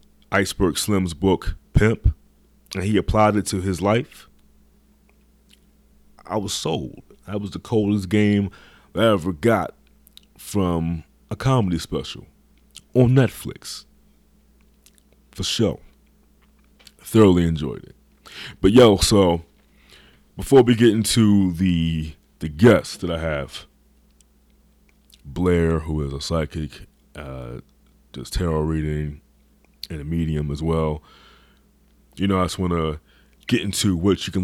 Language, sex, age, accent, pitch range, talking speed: English, male, 30-49, American, 75-100 Hz, 125 wpm